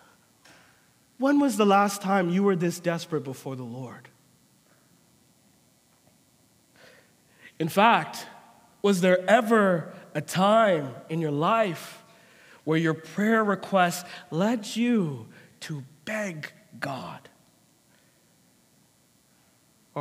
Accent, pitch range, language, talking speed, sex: American, 180-260 Hz, English, 95 wpm, male